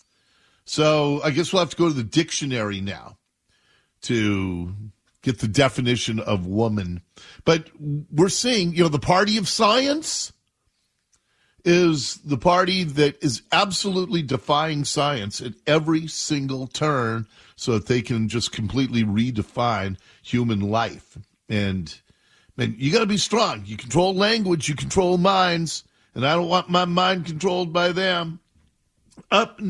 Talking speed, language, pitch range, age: 140 wpm, English, 120-180 Hz, 50-69